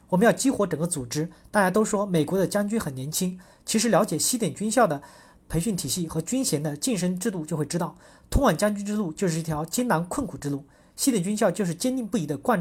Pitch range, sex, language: 155-220 Hz, male, Chinese